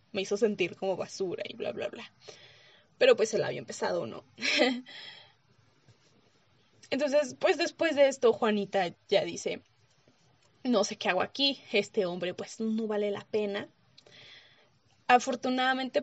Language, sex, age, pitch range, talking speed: Spanish, female, 20-39, 200-235 Hz, 135 wpm